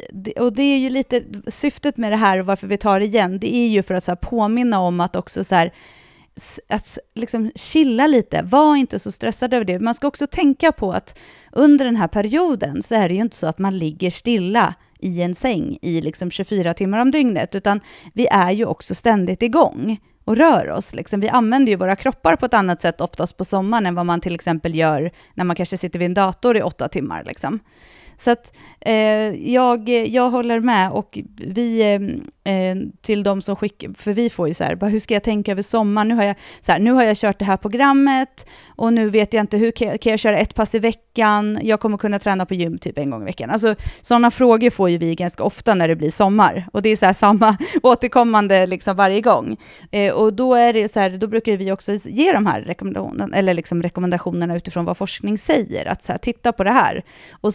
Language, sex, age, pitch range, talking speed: Swedish, female, 30-49, 185-235 Hz, 235 wpm